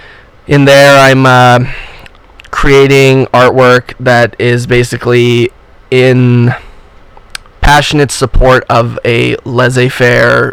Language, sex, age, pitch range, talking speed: English, male, 20-39, 120-130 Hz, 85 wpm